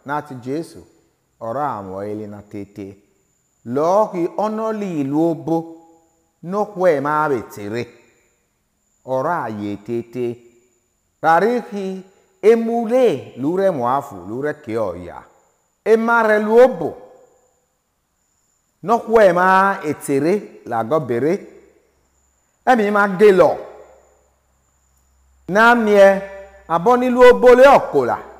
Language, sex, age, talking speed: English, male, 50-69, 85 wpm